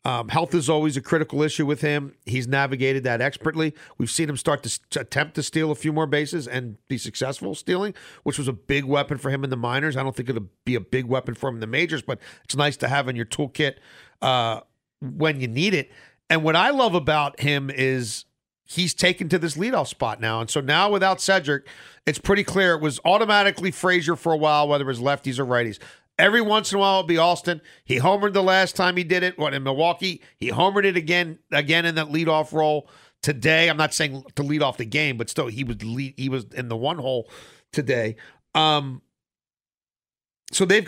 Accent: American